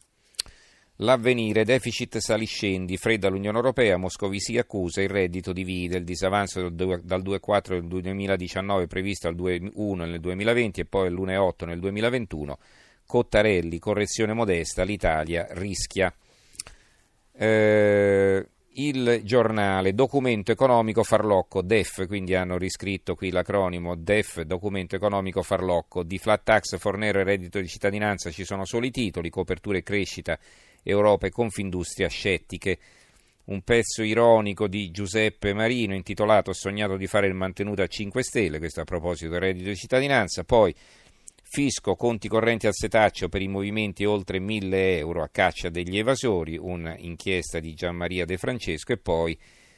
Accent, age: native, 40-59